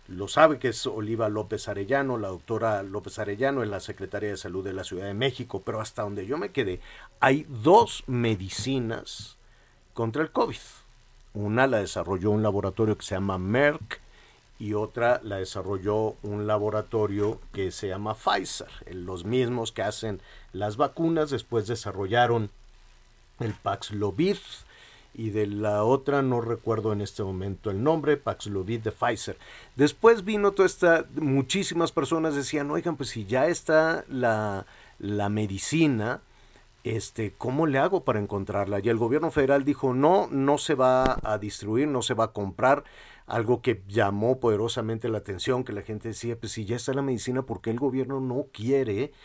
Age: 50-69